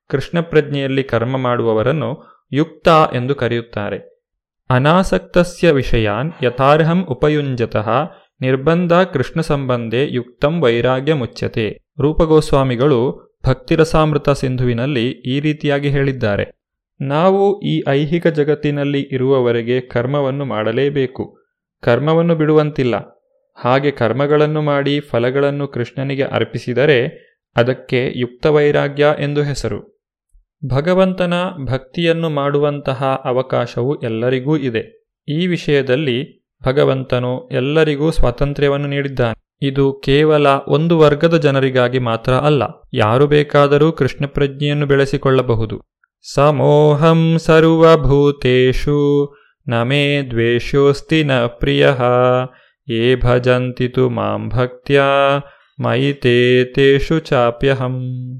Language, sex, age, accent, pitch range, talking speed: Kannada, male, 30-49, native, 125-150 Hz, 80 wpm